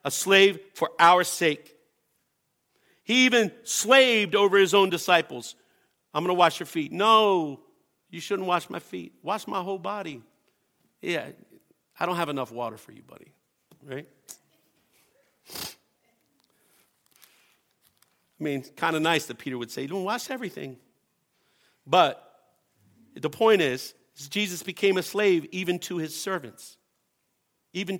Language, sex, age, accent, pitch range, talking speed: English, male, 50-69, American, 170-215 Hz, 135 wpm